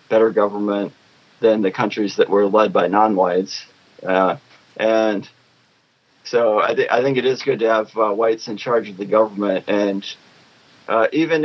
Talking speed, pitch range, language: 170 wpm, 100-130 Hz, English